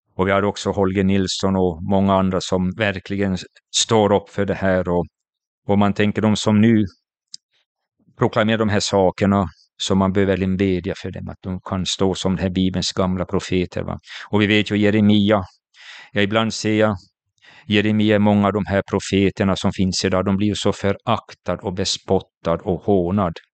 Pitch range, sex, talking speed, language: 95-105 Hz, male, 180 wpm, Swedish